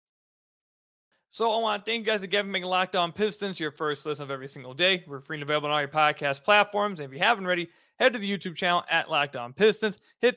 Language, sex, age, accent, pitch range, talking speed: English, male, 20-39, American, 145-185 Hz, 255 wpm